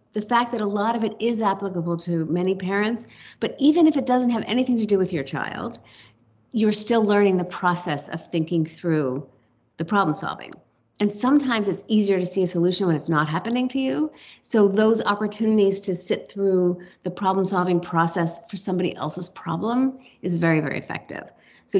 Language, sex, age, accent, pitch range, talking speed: English, female, 40-59, American, 175-215 Hz, 185 wpm